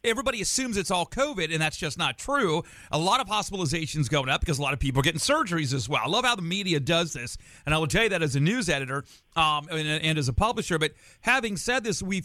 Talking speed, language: 265 wpm, English